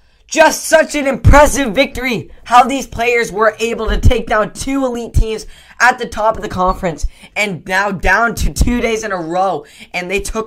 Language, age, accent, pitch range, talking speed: English, 10-29, American, 155-190 Hz, 195 wpm